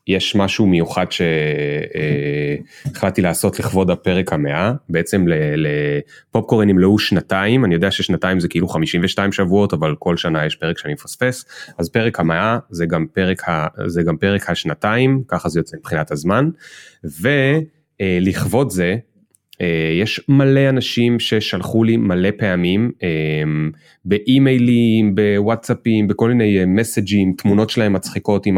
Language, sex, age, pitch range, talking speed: Hebrew, male, 30-49, 90-115 Hz, 130 wpm